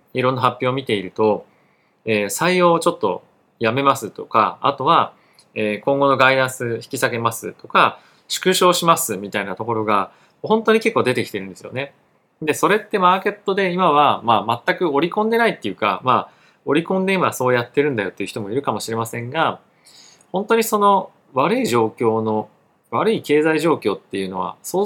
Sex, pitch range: male, 110-180 Hz